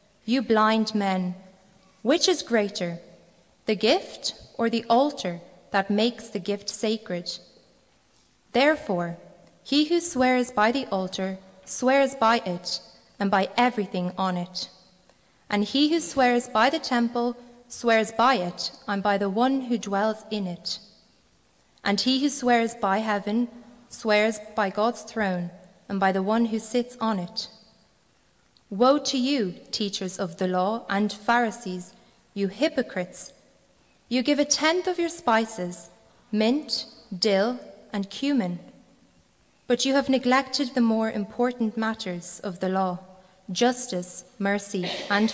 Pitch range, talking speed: 190-245 Hz, 135 wpm